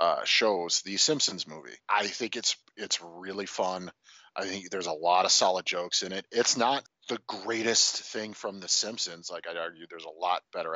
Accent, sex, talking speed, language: American, male, 200 wpm, English